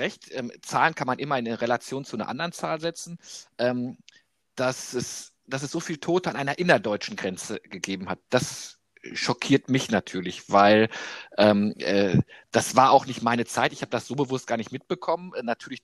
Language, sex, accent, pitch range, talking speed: German, male, German, 110-140 Hz, 180 wpm